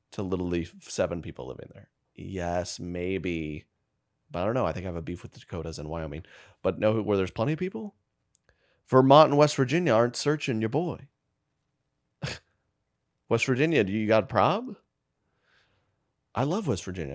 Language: English